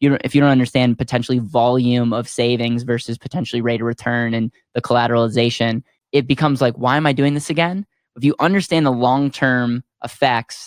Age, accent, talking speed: 10-29, American, 175 wpm